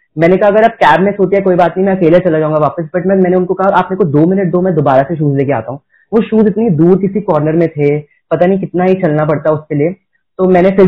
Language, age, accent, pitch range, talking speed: Hindi, 30-49, native, 160-200 Hz, 290 wpm